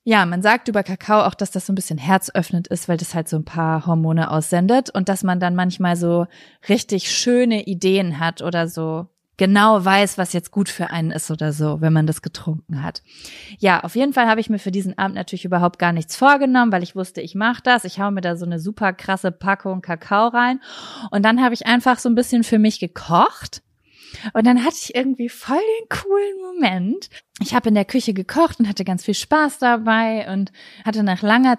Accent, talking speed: German, 220 wpm